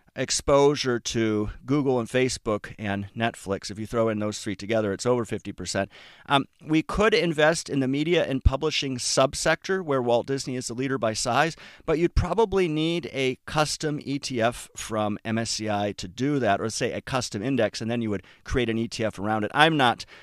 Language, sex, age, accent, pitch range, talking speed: English, male, 40-59, American, 110-140 Hz, 185 wpm